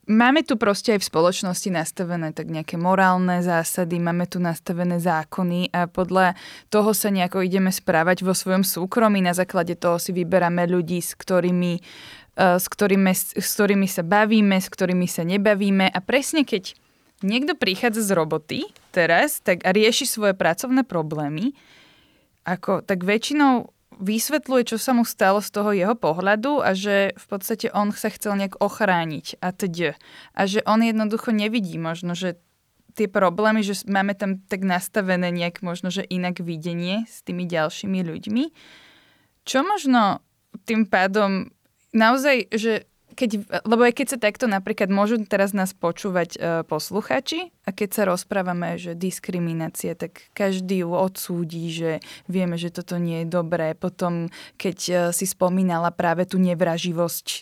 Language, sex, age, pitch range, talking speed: Slovak, female, 20-39, 175-215 Hz, 145 wpm